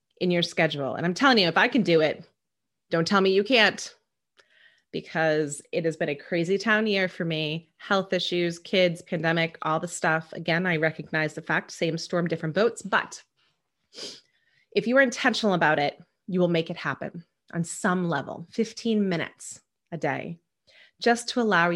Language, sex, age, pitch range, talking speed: English, female, 30-49, 165-210 Hz, 180 wpm